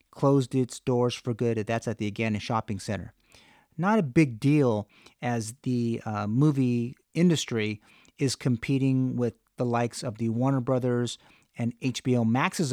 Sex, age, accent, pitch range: male, 40-59, American, 115-140 Hz